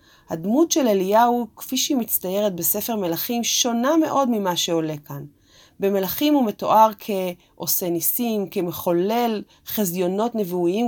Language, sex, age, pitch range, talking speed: Hebrew, female, 30-49, 175-250 Hz, 115 wpm